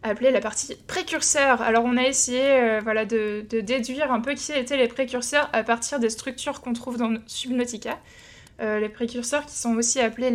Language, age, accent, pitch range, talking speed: French, 20-39, French, 220-260 Hz, 195 wpm